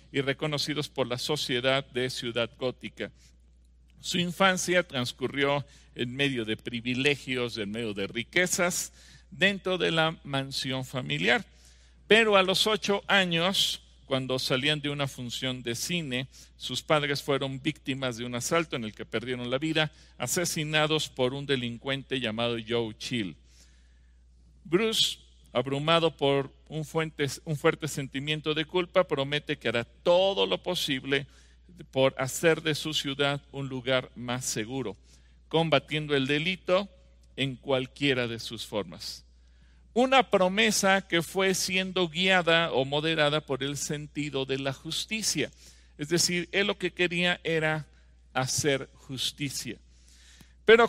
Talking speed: 130 wpm